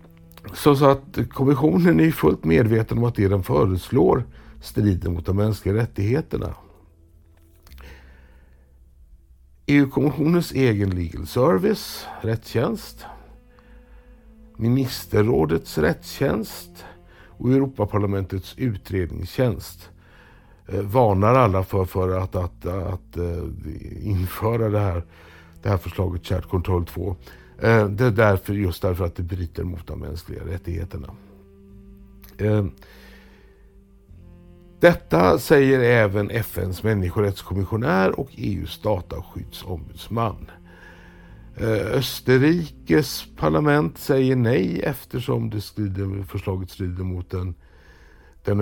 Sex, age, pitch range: male, 60-79, 90-115 Hz